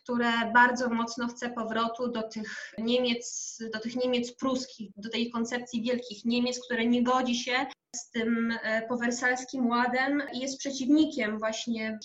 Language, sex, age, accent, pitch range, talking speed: Polish, female, 20-39, native, 225-255 Hz, 140 wpm